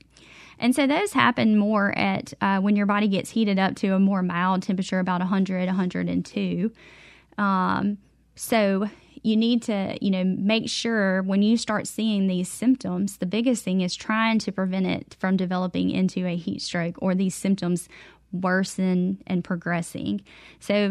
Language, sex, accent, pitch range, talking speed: English, female, American, 185-210 Hz, 165 wpm